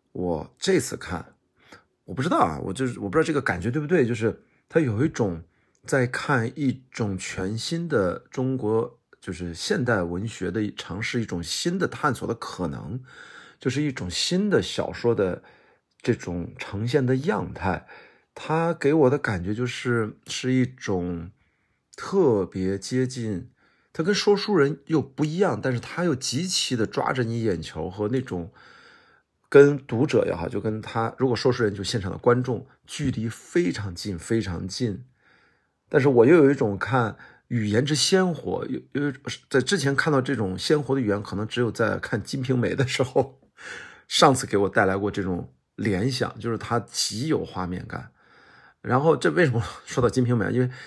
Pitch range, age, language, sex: 105-135 Hz, 50-69, Chinese, male